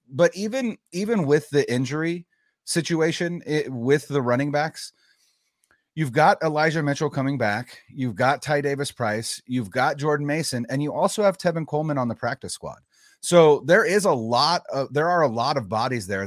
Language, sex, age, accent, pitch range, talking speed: English, male, 30-49, American, 110-145 Hz, 180 wpm